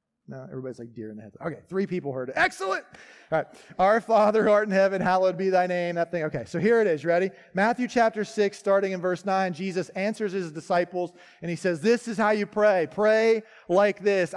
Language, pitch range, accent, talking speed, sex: English, 165-225 Hz, American, 230 wpm, male